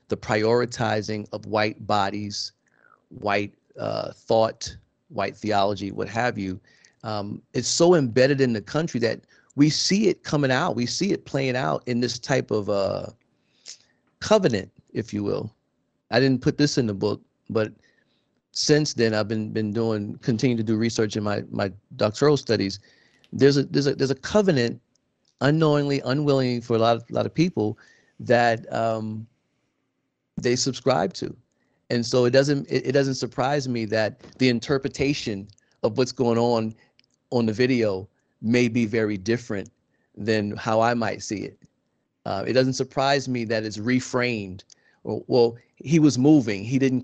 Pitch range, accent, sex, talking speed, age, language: 110-130 Hz, American, male, 165 wpm, 40-59, English